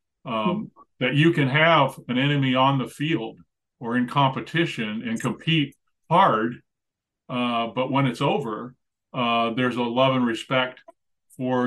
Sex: male